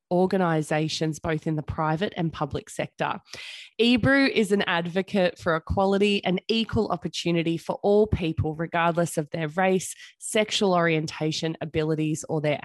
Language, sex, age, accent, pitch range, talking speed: English, female, 20-39, Australian, 165-215 Hz, 140 wpm